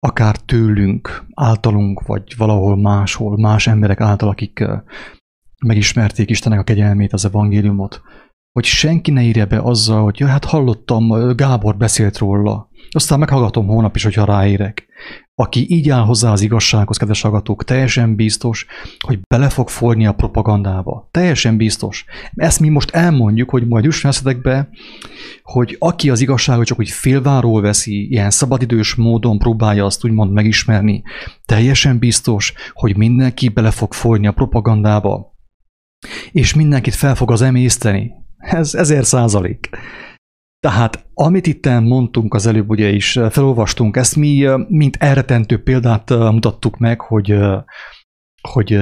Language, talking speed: English, 140 wpm